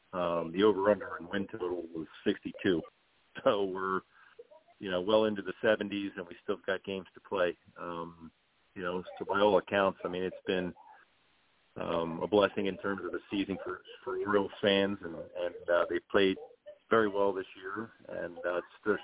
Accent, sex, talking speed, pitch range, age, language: American, male, 190 wpm, 90-105 Hz, 40-59, English